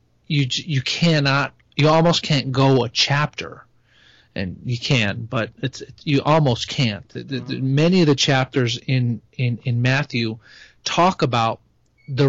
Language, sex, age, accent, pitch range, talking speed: English, male, 40-59, American, 120-145 Hz, 155 wpm